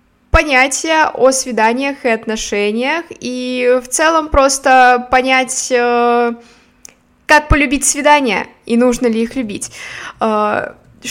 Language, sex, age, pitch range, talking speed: Russian, female, 20-39, 220-270 Hz, 95 wpm